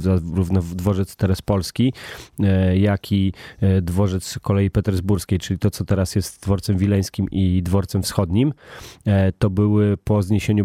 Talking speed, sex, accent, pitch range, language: 130 wpm, male, native, 100-115 Hz, Polish